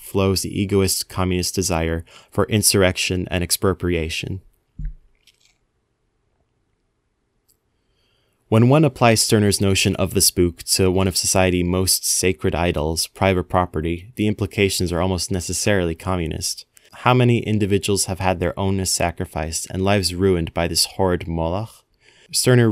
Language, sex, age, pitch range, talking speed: English, male, 20-39, 90-105 Hz, 125 wpm